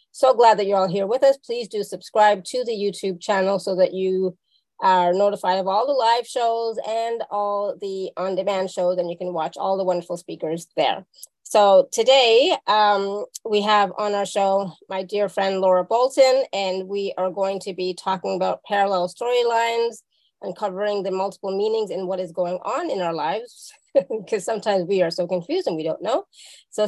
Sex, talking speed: female, 190 wpm